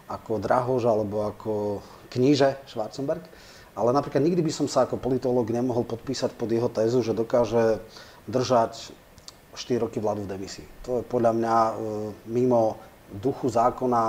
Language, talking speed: Slovak, 145 wpm